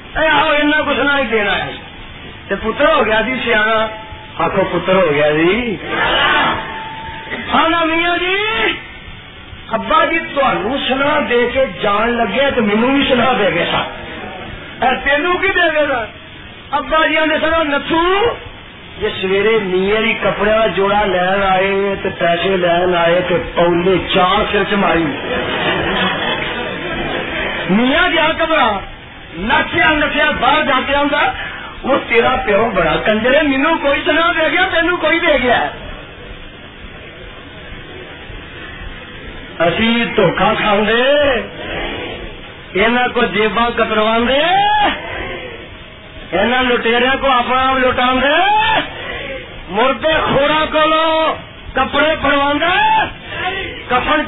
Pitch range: 215-315 Hz